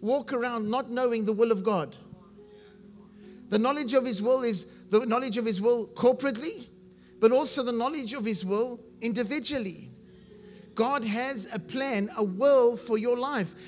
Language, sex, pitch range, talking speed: English, male, 215-260 Hz, 160 wpm